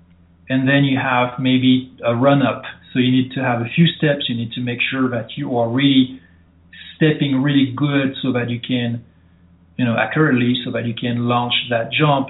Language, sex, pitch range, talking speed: English, male, 115-145 Hz, 200 wpm